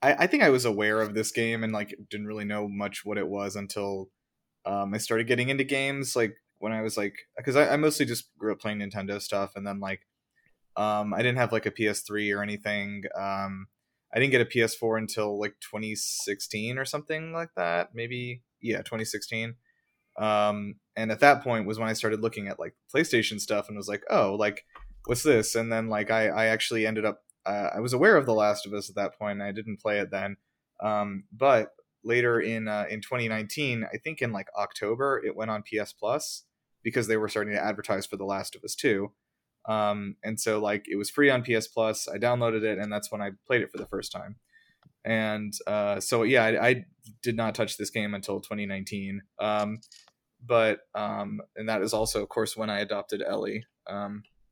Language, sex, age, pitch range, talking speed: English, male, 20-39, 105-115 Hz, 215 wpm